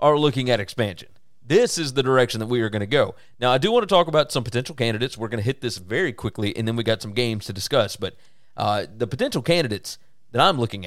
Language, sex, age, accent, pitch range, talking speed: English, male, 30-49, American, 105-130 Hz, 260 wpm